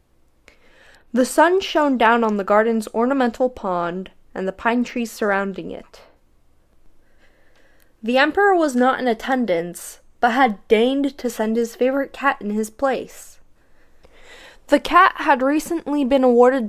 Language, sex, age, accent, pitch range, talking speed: English, female, 10-29, American, 215-275 Hz, 135 wpm